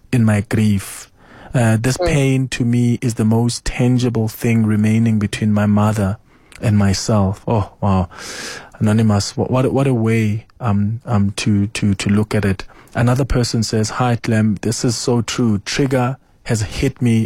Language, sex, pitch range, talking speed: English, male, 105-125 Hz, 165 wpm